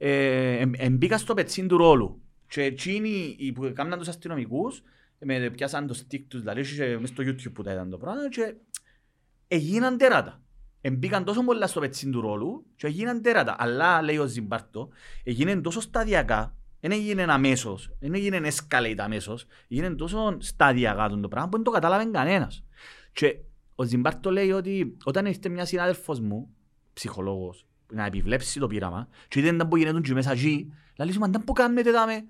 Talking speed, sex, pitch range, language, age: 115 wpm, male, 125-170 Hz, Greek, 30-49